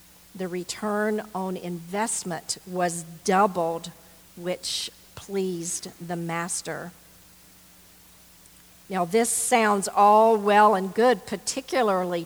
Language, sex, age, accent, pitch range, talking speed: English, female, 50-69, American, 180-220 Hz, 90 wpm